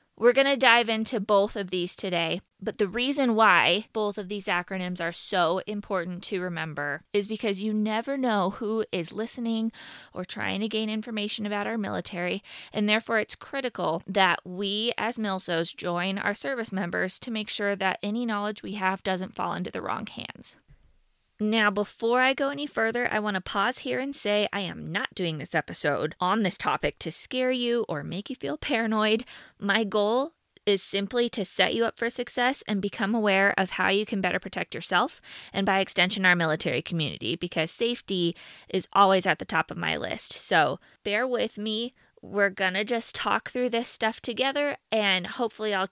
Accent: American